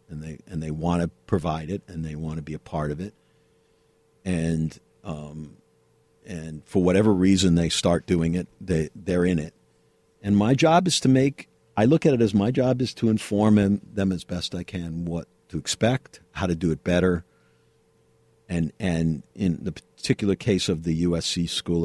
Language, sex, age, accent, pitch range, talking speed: English, male, 50-69, American, 80-100 Hz, 190 wpm